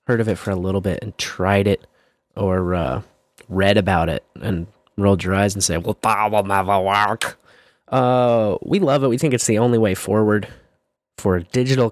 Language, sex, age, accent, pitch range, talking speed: English, male, 20-39, American, 100-125 Hz, 175 wpm